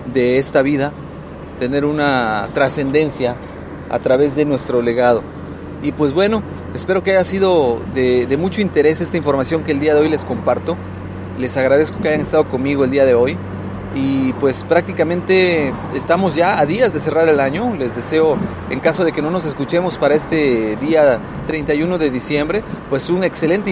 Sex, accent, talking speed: male, Mexican, 175 wpm